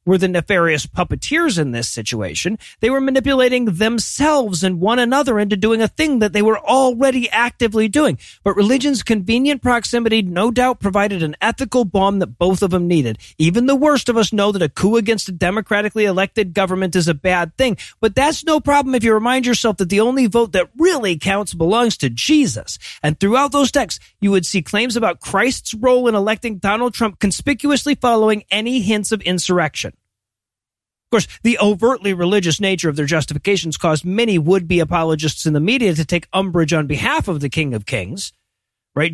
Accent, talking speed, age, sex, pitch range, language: American, 190 wpm, 40-59, male, 165-230 Hz, English